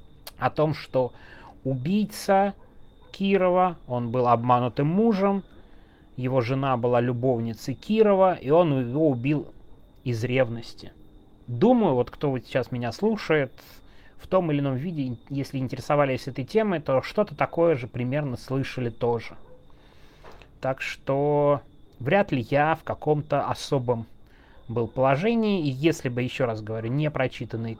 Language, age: Russian, 30-49